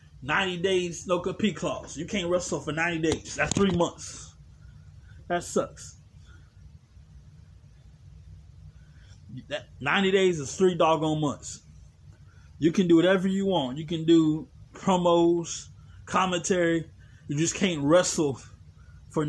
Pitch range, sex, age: 145-180 Hz, male, 20-39